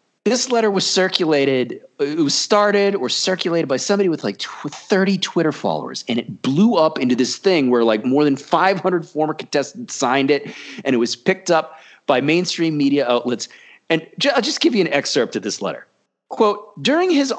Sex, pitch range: male, 135-195 Hz